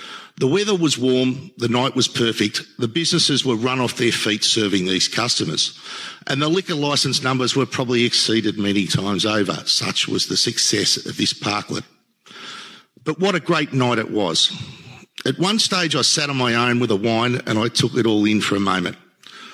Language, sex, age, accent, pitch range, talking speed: English, male, 50-69, Australian, 115-150 Hz, 195 wpm